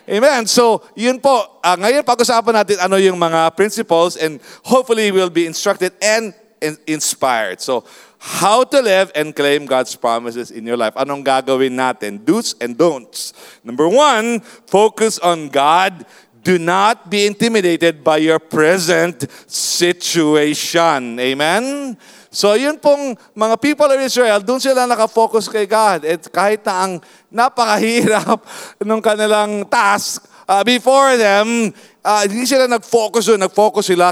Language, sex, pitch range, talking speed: English, male, 160-225 Hz, 140 wpm